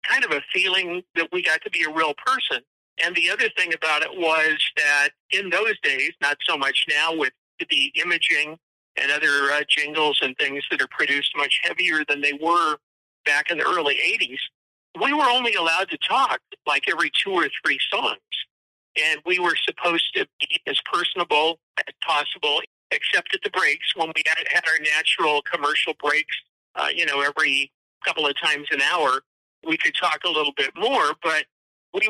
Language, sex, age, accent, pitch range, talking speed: English, male, 50-69, American, 150-210 Hz, 185 wpm